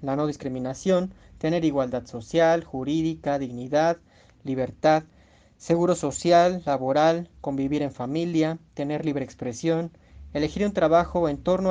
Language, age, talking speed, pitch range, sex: Spanish, 30-49, 120 wpm, 130-165 Hz, male